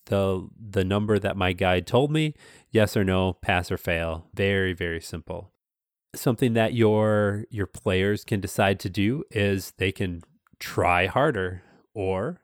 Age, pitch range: 30-49, 95-110 Hz